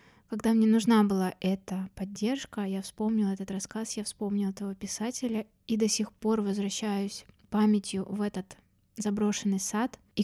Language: Russian